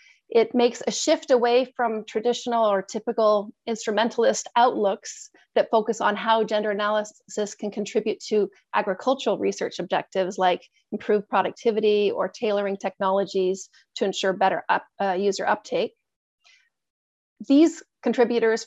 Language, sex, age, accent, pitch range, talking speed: English, female, 40-59, American, 210-260 Hz, 120 wpm